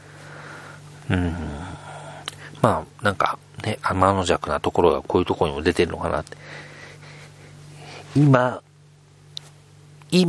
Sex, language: male, Japanese